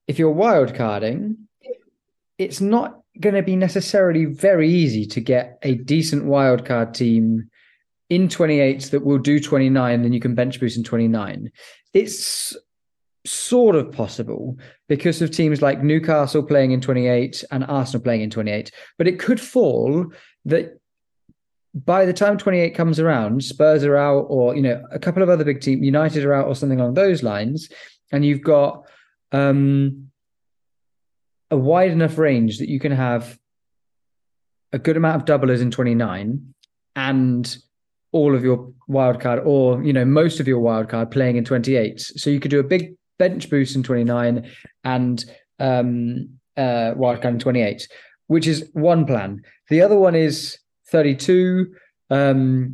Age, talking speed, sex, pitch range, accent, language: 30-49, 155 wpm, male, 125-160 Hz, British, English